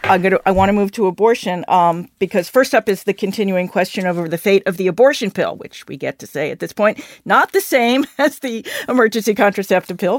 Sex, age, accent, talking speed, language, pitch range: female, 50-69, American, 225 wpm, English, 185-230 Hz